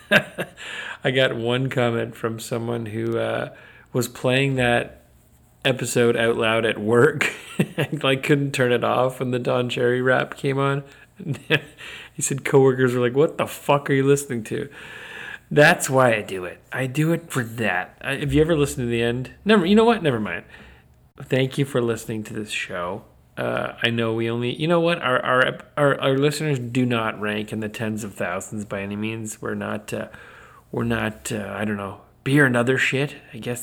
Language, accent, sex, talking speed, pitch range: English, American, male, 200 wpm, 110-135 Hz